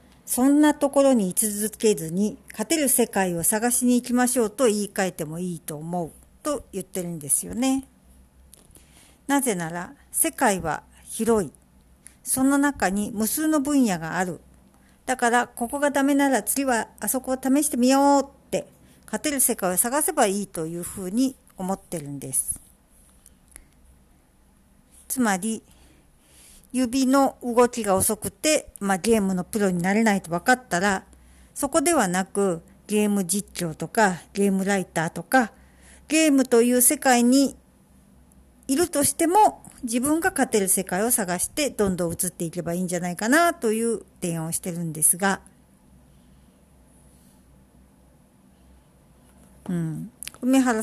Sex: female